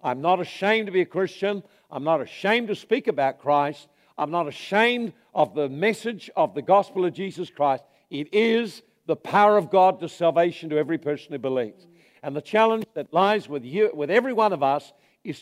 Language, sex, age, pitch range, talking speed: English, male, 60-79, 150-195 Hz, 200 wpm